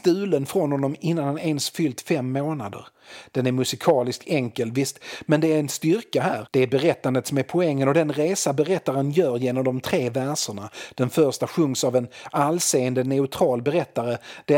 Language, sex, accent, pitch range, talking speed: Swedish, male, native, 130-155 Hz, 180 wpm